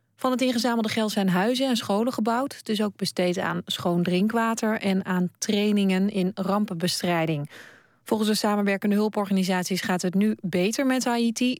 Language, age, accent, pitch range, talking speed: Dutch, 30-49, Dutch, 180-220 Hz, 155 wpm